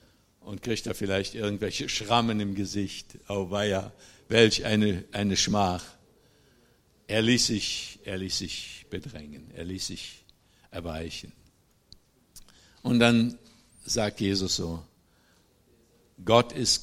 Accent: German